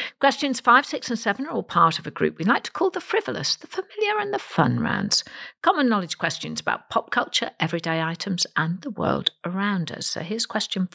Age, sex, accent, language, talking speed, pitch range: 50-69, female, British, English, 215 wpm, 165-250 Hz